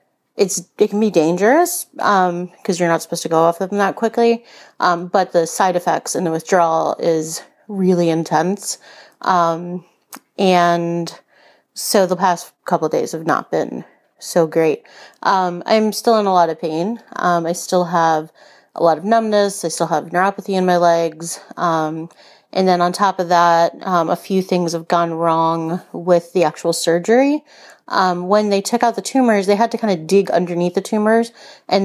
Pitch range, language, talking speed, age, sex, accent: 170-200 Hz, English, 185 wpm, 30-49, female, American